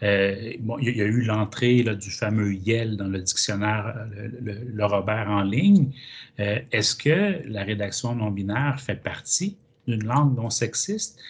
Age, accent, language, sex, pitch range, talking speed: 30-49, Canadian, French, male, 100-125 Hz, 170 wpm